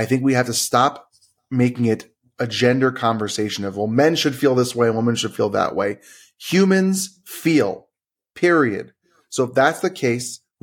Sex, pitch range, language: male, 120-150 Hz, English